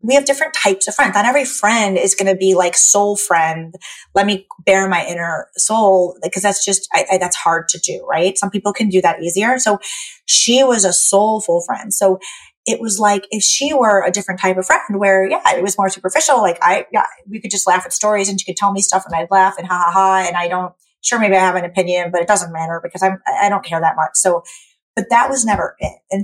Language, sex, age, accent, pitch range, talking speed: English, female, 20-39, American, 180-210 Hz, 250 wpm